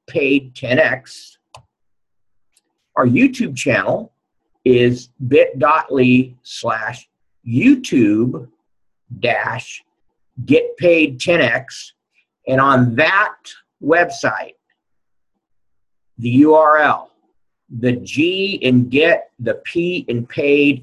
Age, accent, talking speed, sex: 50-69, American, 75 wpm, male